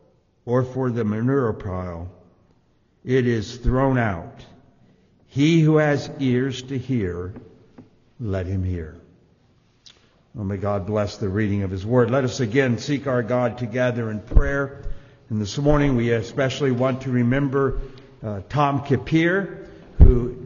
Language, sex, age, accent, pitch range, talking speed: English, male, 60-79, American, 105-135 Hz, 140 wpm